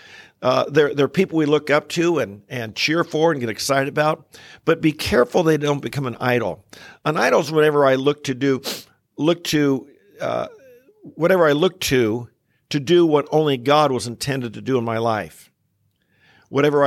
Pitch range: 125-155 Hz